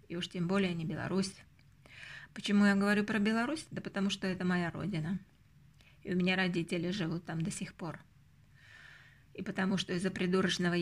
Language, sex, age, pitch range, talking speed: Russian, female, 20-39, 165-200 Hz, 170 wpm